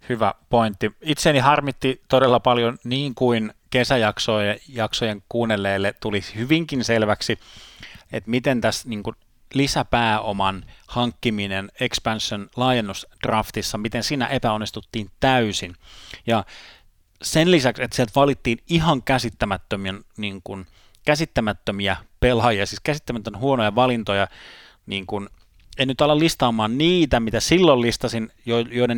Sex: male